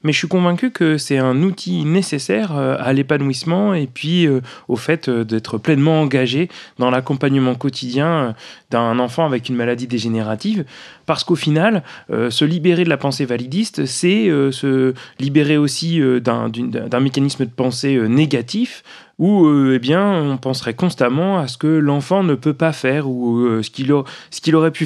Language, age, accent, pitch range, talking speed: French, 30-49, French, 130-175 Hz, 165 wpm